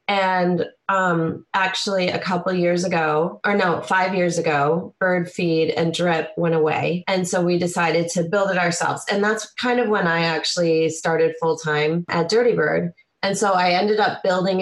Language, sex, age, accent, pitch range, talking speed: English, female, 20-39, American, 160-190 Hz, 180 wpm